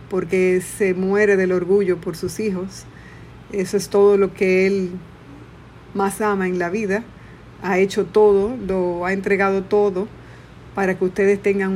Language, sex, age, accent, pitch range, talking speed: Spanish, female, 50-69, American, 190-215 Hz, 155 wpm